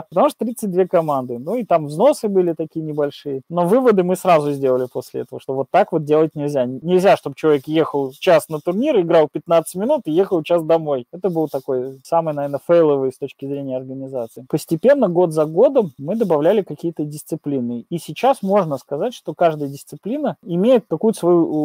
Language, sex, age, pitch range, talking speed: Russian, male, 20-39, 145-185 Hz, 185 wpm